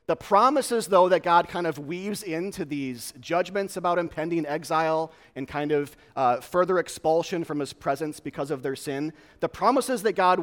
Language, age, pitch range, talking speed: English, 30-49, 150-190 Hz, 180 wpm